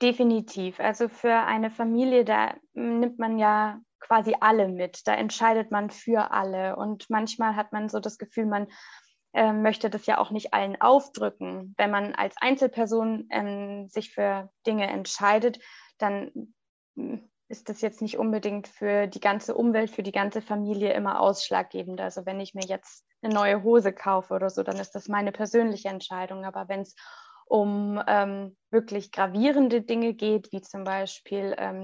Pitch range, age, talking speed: 195-225 Hz, 20-39, 165 wpm